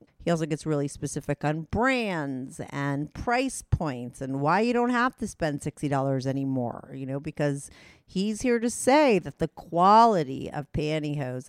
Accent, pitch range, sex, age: American, 140-190 Hz, female, 40-59